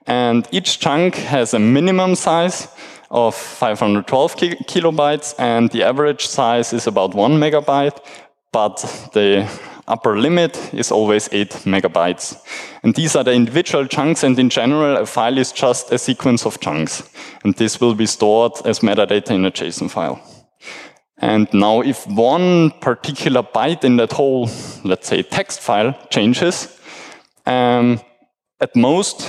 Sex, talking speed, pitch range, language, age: male, 150 wpm, 115-150 Hz, German, 20-39